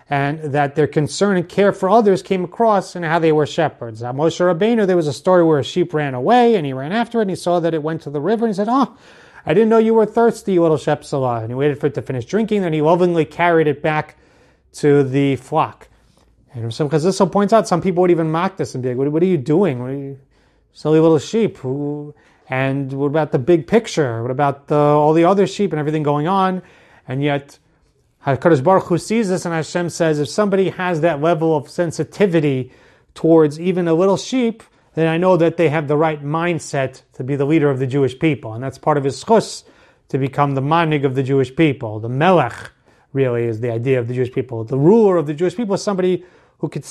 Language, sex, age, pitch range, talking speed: English, male, 30-49, 140-185 Hz, 240 wpm